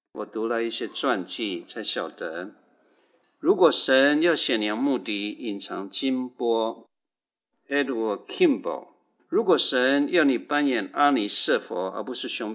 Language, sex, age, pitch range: Chinese, male, 60-79, 110-145 Hz